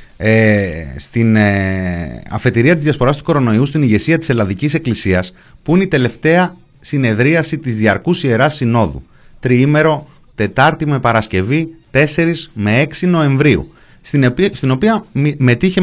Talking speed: 135 wpm